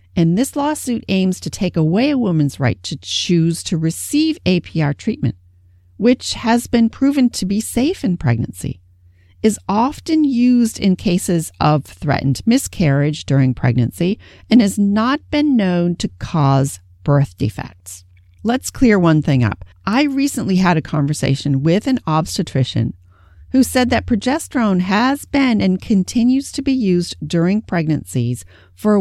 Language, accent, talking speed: English, American, 145 wpm